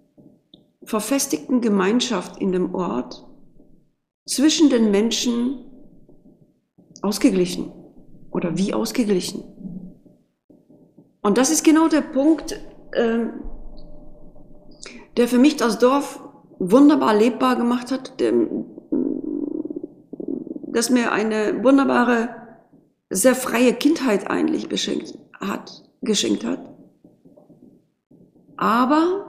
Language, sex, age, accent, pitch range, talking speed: German, female, 40-59, German, 200-275 Hz, 80 wpm